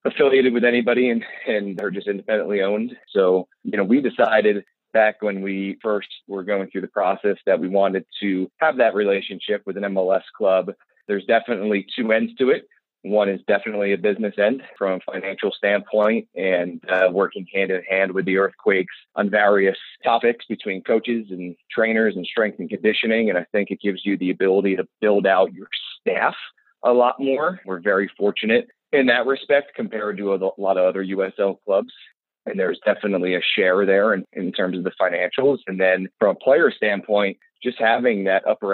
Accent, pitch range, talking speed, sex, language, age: American, 95-110 Hz, 190 wpm, male, English, 30-49